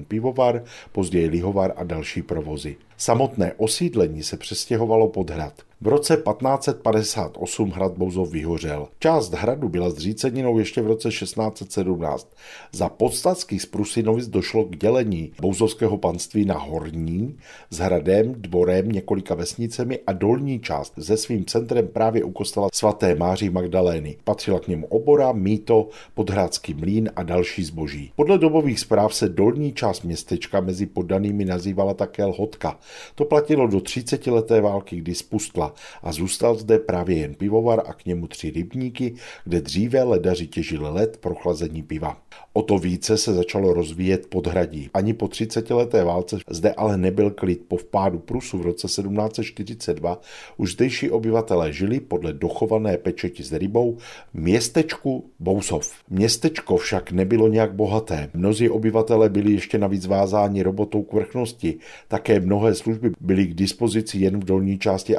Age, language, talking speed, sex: 50-69, Czech, 145 wpm, male